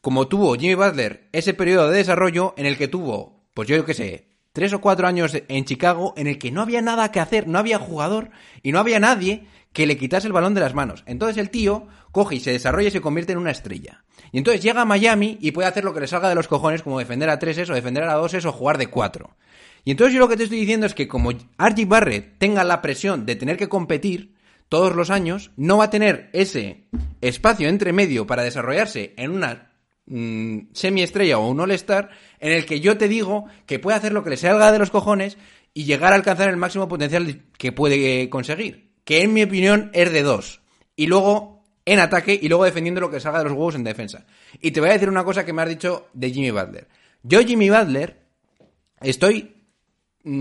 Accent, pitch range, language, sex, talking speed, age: Spanish, 145-205 Hz, Spanish, male, 230 wpm, 30-49